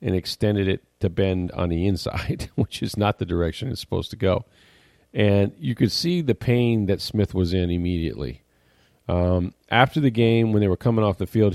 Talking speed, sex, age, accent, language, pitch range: 205 wpm, male, 40-59, American, English, 90-110 Hz